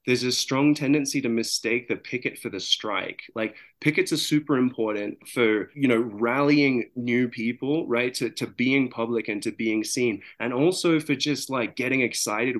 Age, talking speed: 20-39, 180 wpm